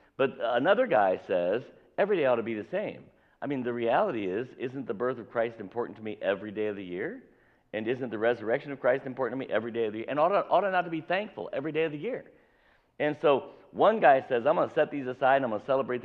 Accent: American